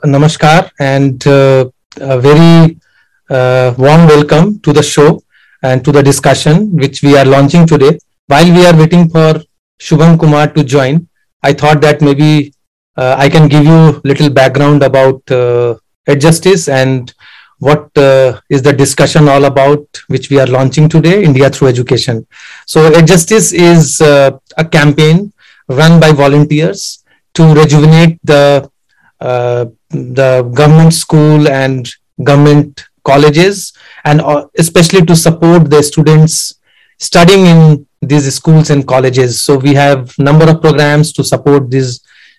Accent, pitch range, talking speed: Indian, 135-160 Hz, 140 wpm